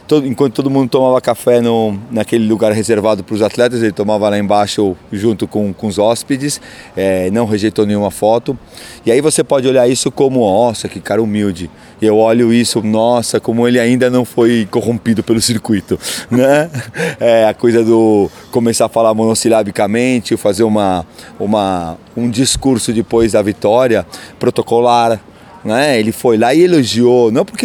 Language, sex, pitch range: Portuguese, male, 105-130 Hz